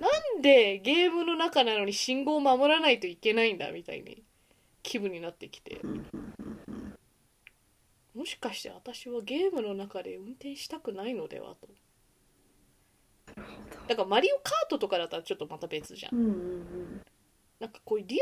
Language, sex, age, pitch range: Japanese, female, 20-39, 200-295 Hz